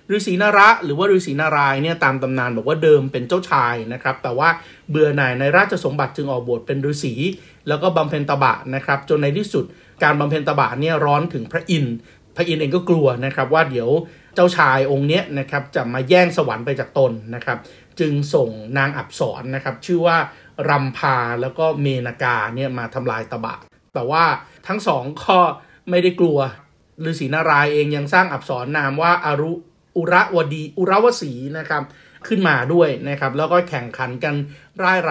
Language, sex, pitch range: Thai, male, 135-170 Hz